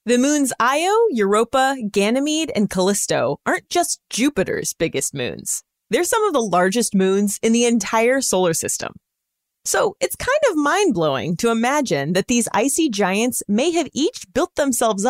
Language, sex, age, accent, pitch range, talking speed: English, female, 30-49, American, 180-275 Hz, 155 wpm